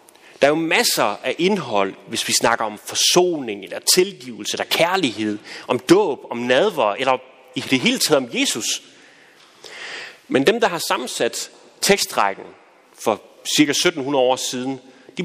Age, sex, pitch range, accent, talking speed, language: 30-49, male, 130-205 Hz, native, 150 wpm, Danish